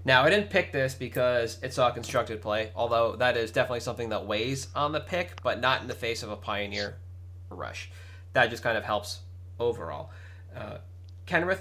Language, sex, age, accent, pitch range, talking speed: English, male, 20-39, American, 90-115 Hz, 195 wpm